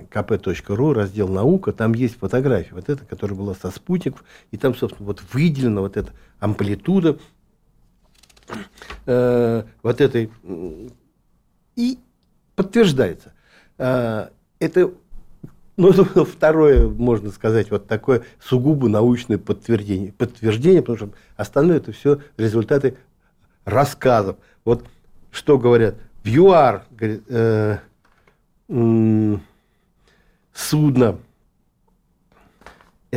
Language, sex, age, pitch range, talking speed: Russian, male, 60-79, 110-150 Hz, 90 wpm